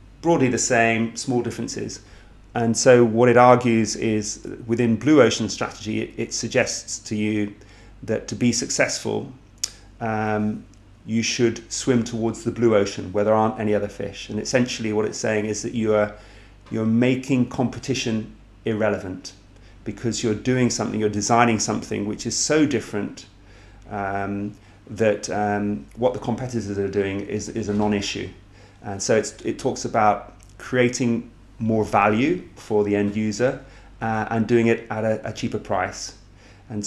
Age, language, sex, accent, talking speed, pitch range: 40-59, Portuguese, male, British, 155 wpm, 105-120 Hz